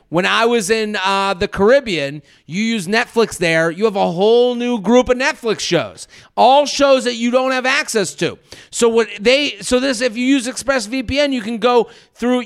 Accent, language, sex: American, English, male